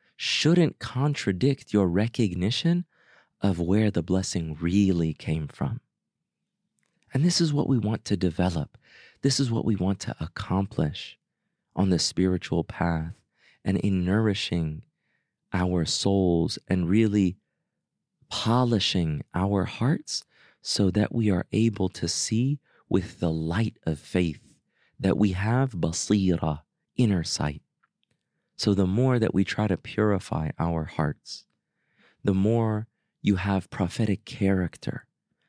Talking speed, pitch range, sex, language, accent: 125 wpm, 90-115 Hz, male, English, American